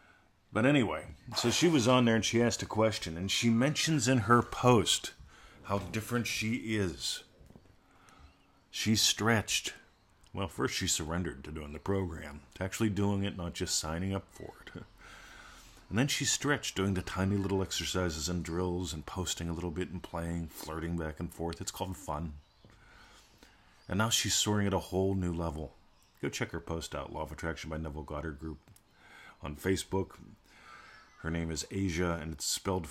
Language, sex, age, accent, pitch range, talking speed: English, male, 40-59, American, 80-100 Hz, 175 wpm